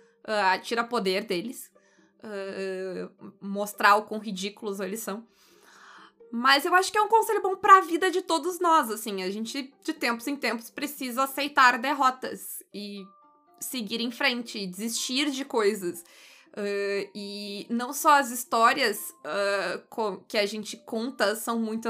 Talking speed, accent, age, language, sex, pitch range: 135 wpm, Brazilian, 20-39, Portuguese, female, 205-250 Hz